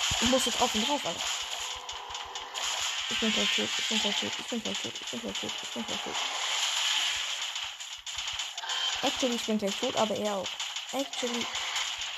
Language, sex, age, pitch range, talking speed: German, female, 20-39, 210-285 Hz, 185 wpm